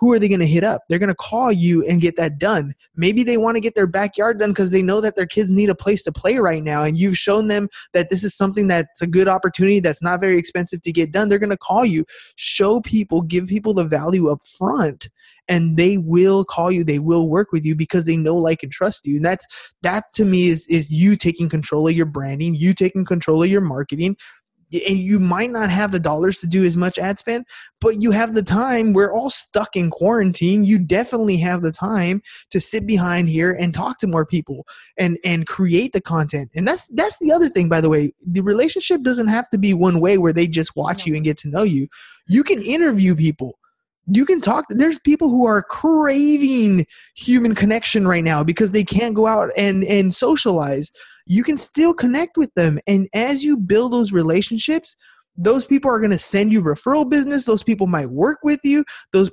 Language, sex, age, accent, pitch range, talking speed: English, male, 20-39, American, 175-230 Hz, 230 wpm